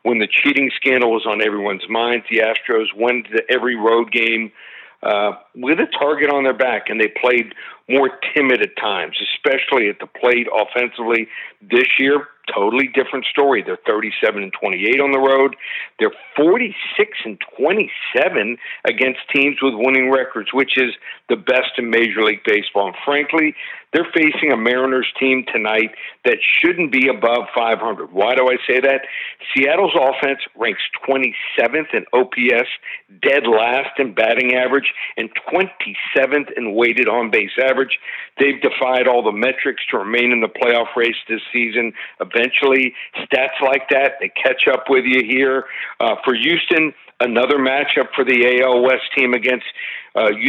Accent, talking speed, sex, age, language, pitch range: American, 160 wpm, male, 50-69, English, 120-145 Hz